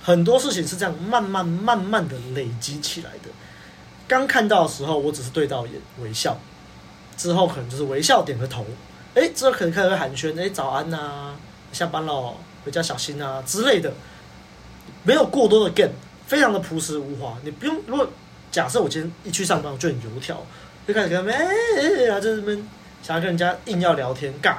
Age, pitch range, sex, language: 20-39, 135-180 Hz, male, Chinese